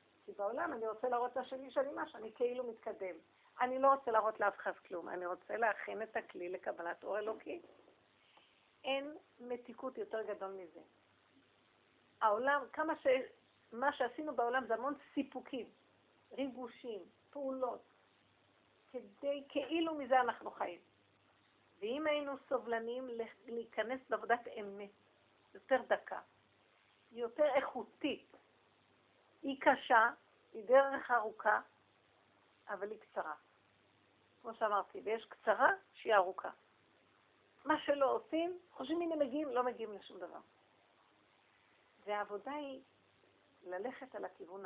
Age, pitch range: 50-69, 205-270 Hz